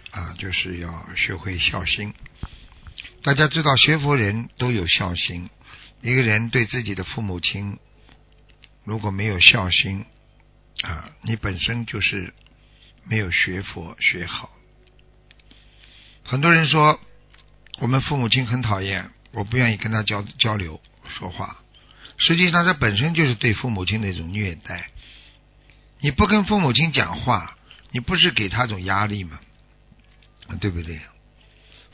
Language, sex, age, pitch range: Chinese, male, 60-79, 95-125 Hz